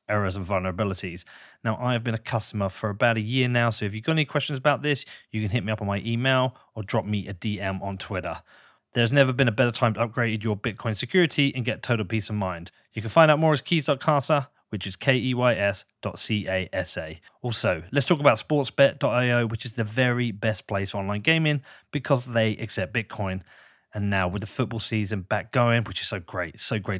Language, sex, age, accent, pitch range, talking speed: English, male, 30-49, British, 105-135 Hz, 220 wpm